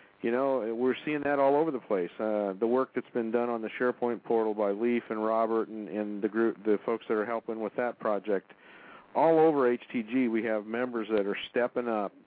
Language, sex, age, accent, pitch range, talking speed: English, male, 50-69, American, 105-125 Hz, 220 wpm